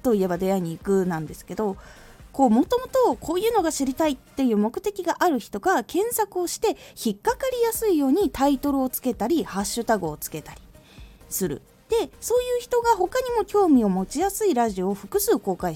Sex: female